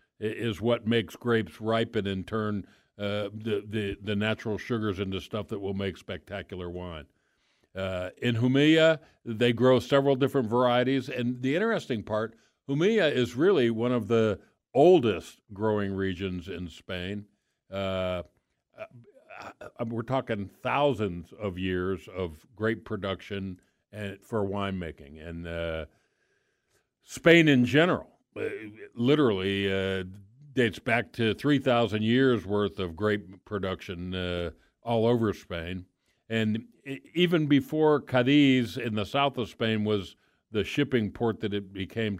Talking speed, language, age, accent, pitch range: 130 wpm, English, 60-79, American, 95-125 Hz